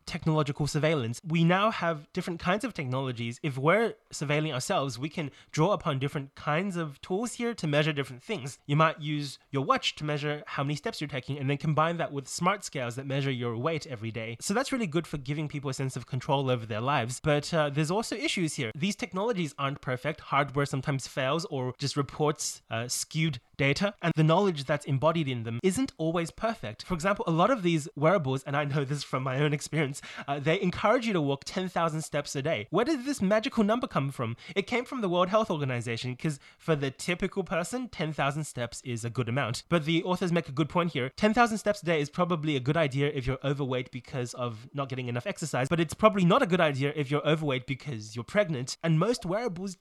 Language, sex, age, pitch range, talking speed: English, male, 20-39, 140-180 Hz, 225 wpm